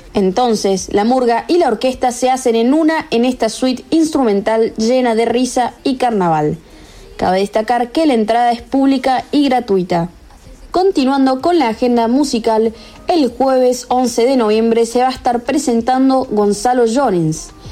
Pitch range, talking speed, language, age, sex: 215-260 Hz, 150 wpm, Spanish, 20-39, female